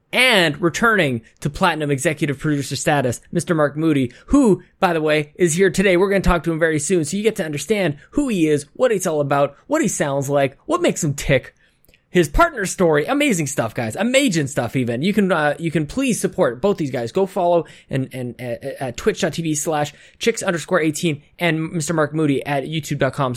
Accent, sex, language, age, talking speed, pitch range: American, male, English, 20-39, 210 wpm, 145-195 Hz